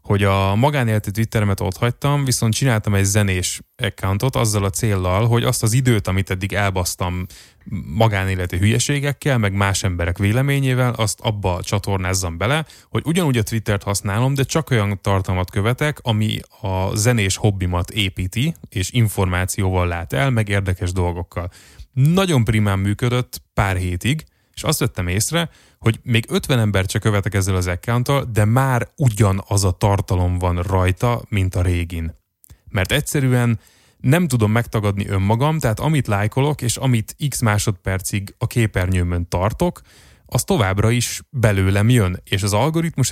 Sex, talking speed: male, 145 wpm